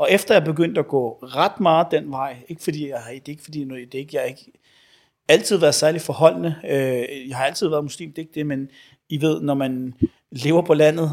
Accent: native